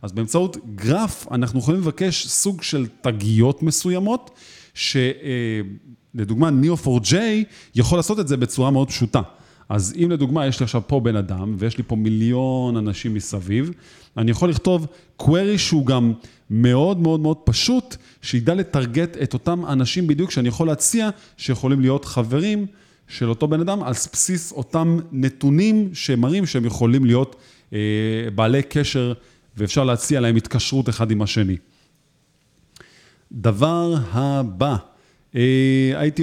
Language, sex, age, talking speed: Hebrew, male, 30-49, 135 wpm